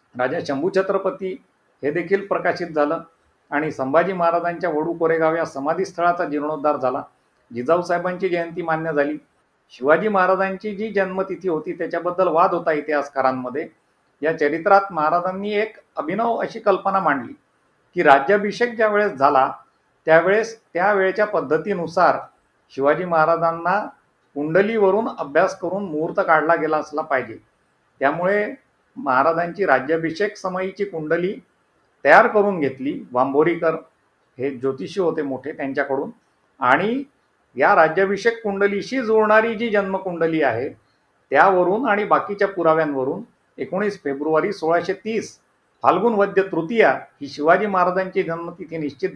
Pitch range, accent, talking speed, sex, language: 155-195 Hz, native, 110 wpm, male, Marathi